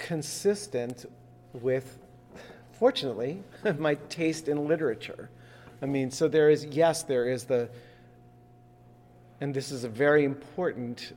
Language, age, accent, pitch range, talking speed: English, 40-59, American, 100-135 Hz, 120 wpm